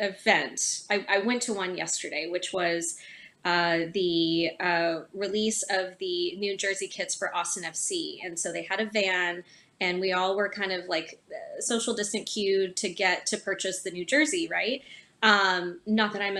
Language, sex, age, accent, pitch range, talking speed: English, female, 20-39, American, 185-225 Hz, 180 wpm